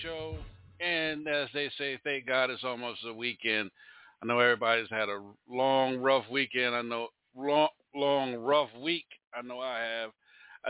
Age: 50-69